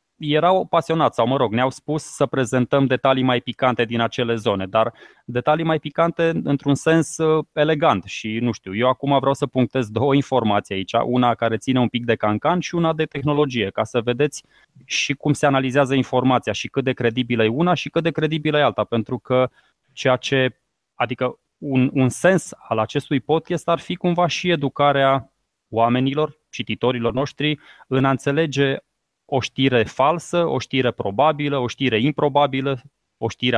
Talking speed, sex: 175 wpm, male